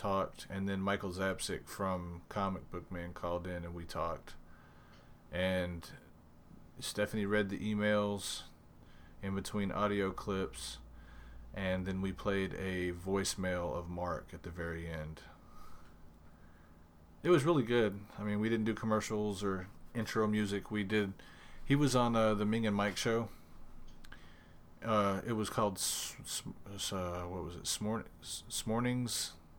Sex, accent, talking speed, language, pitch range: male, American, 140 wpm, English, 80-105 Hz